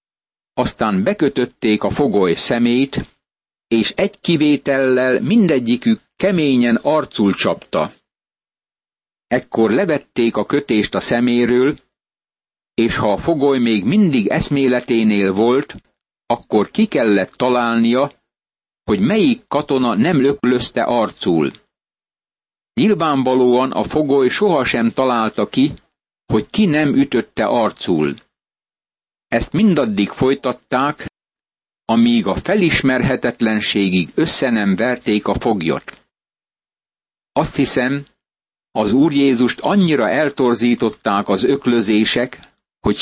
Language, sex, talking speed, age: Hungarian, male, 95 wpm, 60-79